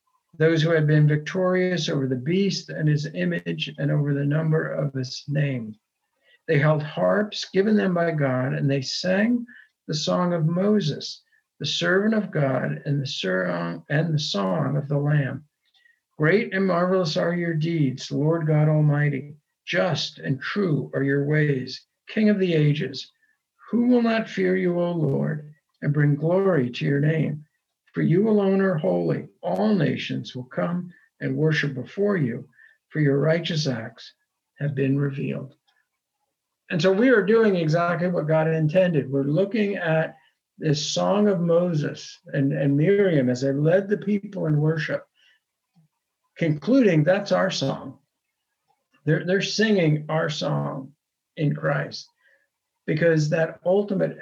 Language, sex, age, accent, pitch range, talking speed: English, male, 60-79, American, 145-190 Hz, 150 wpm